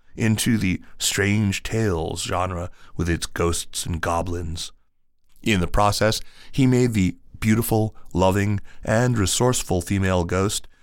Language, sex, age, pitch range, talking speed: English, male, 30-49, 85-105 Hz, 120 wpm